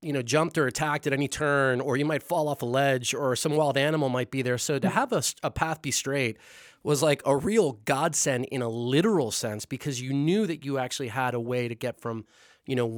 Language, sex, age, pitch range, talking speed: English, male, 30-49, 125-150 Hz, 245 wpm